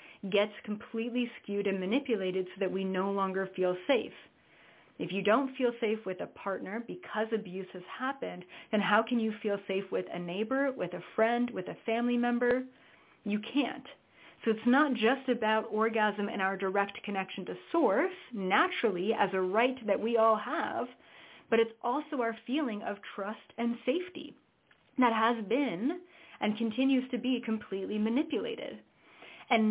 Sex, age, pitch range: female, 30-49, 195-245 Hz